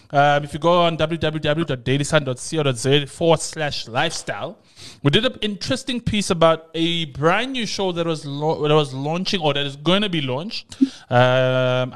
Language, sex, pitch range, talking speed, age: English, male, 135-170 Hz, 165 wpm, 20-39